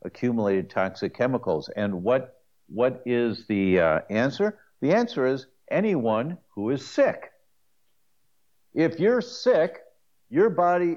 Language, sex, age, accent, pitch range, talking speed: English, male, 60-79, American, 120-190 Hz, 120 wpm